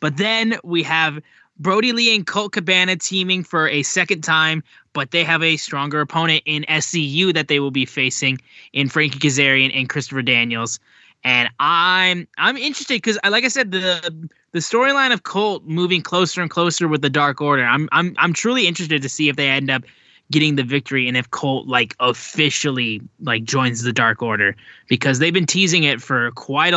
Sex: male